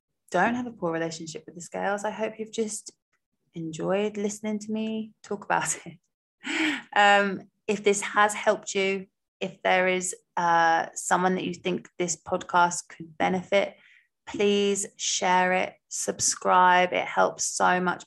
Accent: British